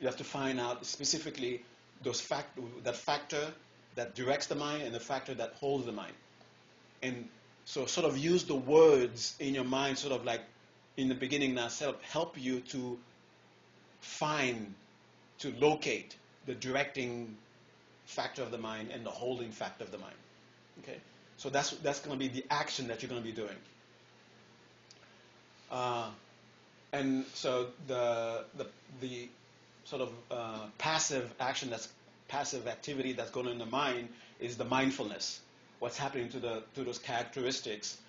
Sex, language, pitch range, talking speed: male, English, 115-135 Hz, 160 wpm